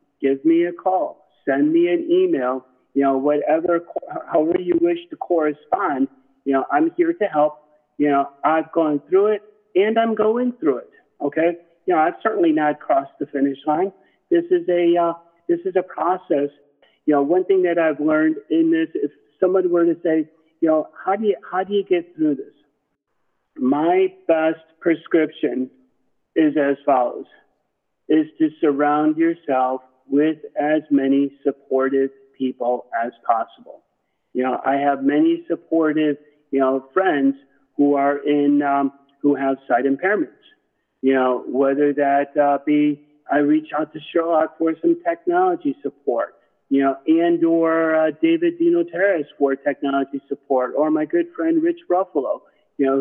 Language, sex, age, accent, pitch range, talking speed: English, male, 50-69, American, 140-210 Hz, 165 wpm